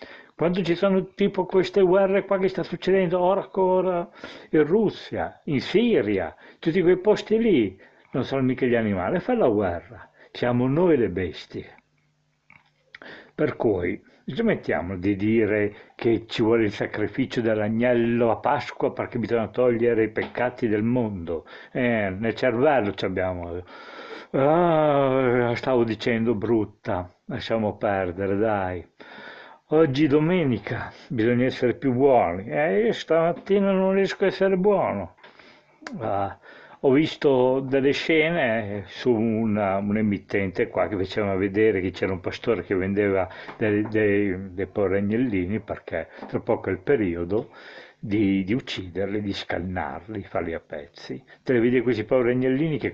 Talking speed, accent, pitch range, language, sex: 140 wpm, native, 105-165 Hz, Italian, male